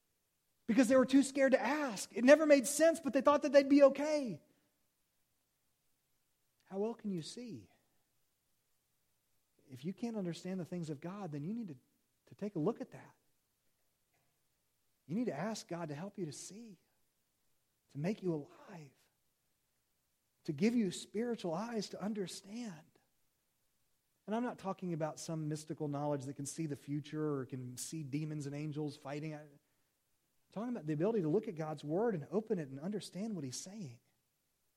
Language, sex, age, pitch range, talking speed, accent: English, male, 40-59, 165-245 Hz, 175 wpm, American